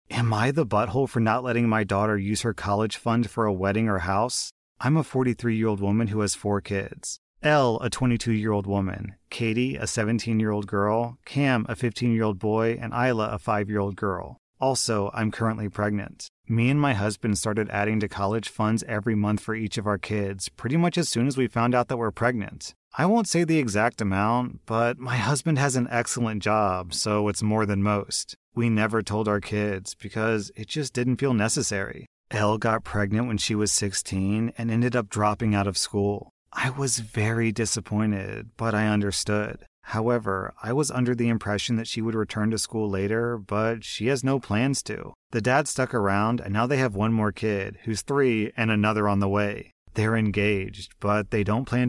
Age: 30-49